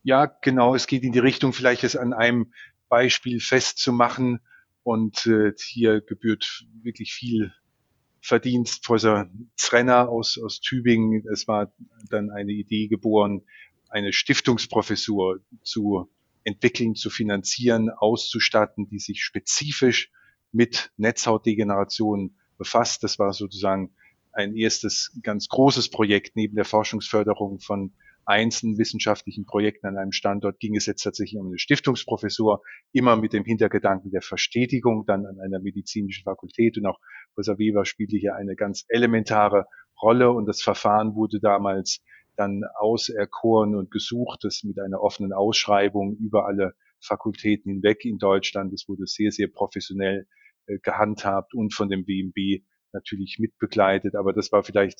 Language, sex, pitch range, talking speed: German, male, 100-115 Hz, 135 wpm